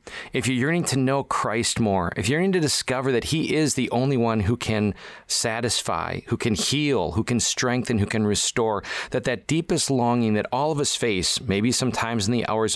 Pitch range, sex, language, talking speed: 110-140 Hz, male, English, 205 wpm